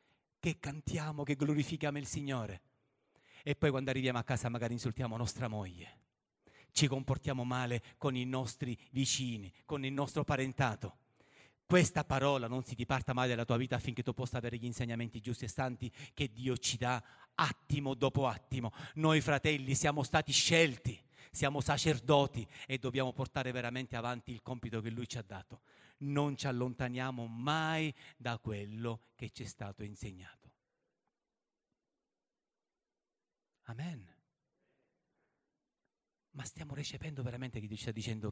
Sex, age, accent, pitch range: male, 40-59, native, 120-150 Hz